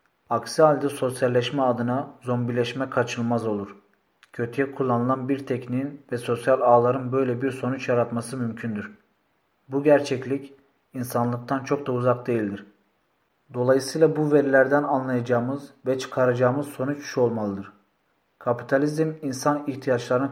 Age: 40-59